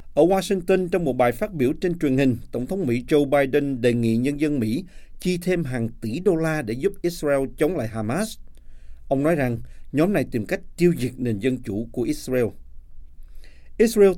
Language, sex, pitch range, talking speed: Vietnamese, male, 115-155 Hz, 200 wpm